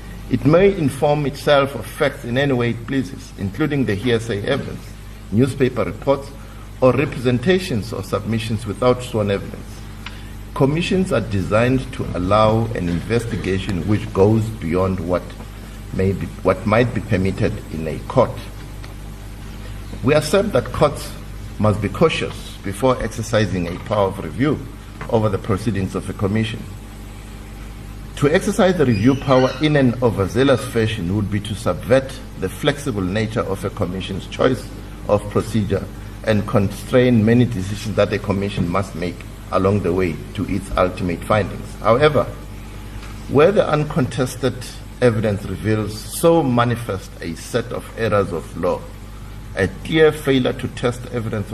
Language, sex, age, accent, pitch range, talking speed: English, male, 50-69, South African, 100-125 Hz, 140 wpm